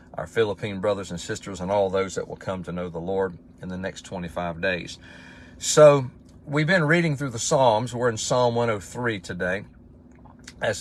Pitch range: 85-125 Hz